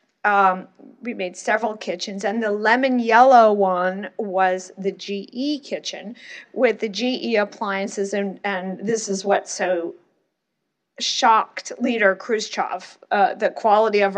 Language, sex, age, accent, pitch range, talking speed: English, female, 40-59, American, 195-245 Hz, 130 wpm